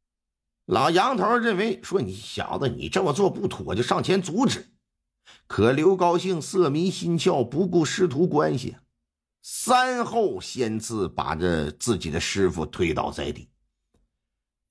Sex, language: male, Chinese